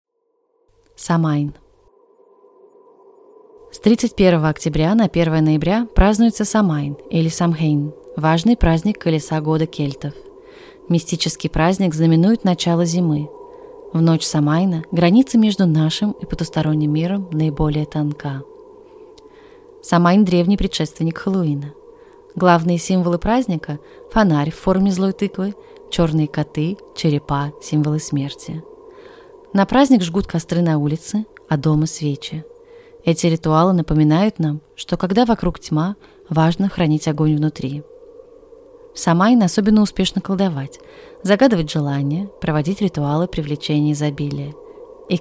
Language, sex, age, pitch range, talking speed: Russian, female, 20-39, 155-225 Hz, 110 wpm